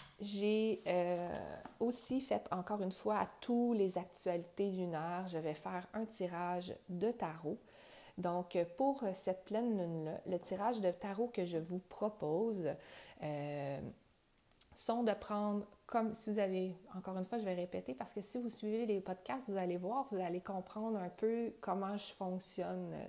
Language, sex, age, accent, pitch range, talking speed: French, female, 30-49, Canadian, 180-220 Hz, 165 wpm